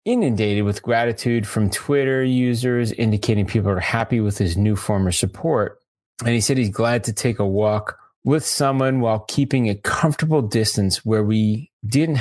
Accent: American